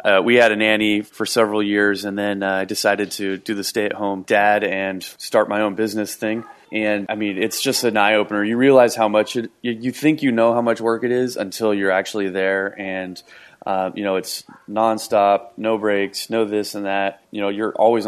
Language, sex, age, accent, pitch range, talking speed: English, male, 20-39, American, 100-115 Hz, 220 wpm